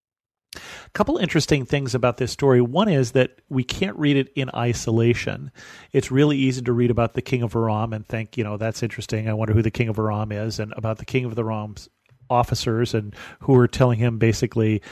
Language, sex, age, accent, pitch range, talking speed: English, male, 40-59, American, 110-130 Hz, 215 wpm